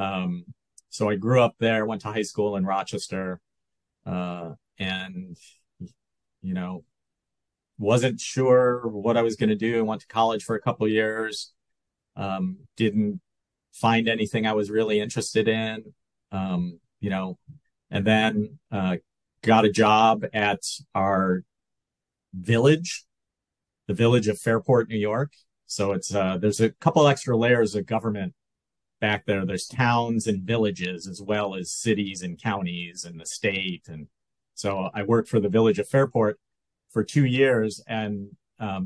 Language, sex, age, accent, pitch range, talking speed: English, male, 40-59, American, 100-115 Hz, 150 wpm